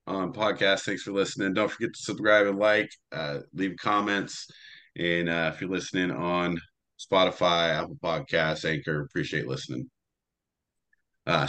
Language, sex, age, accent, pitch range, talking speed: English, male, 30-49, American, 90-110 Hz, 140 wpm